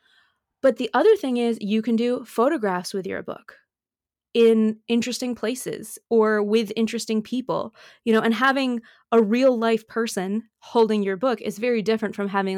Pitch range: 200-235 Hz